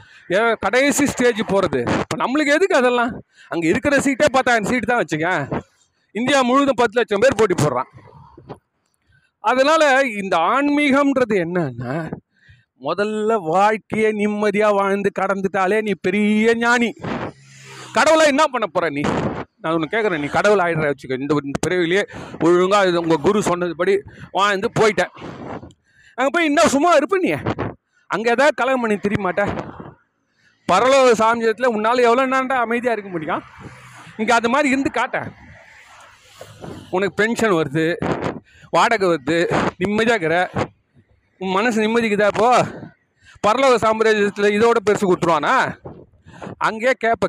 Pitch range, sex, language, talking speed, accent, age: 170-240 Hz, male, Tamil, 120 wpm, native, 40-59